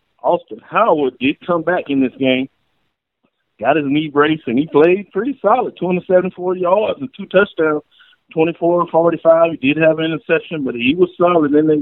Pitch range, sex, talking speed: 130-165 Hz, male, 175 wpm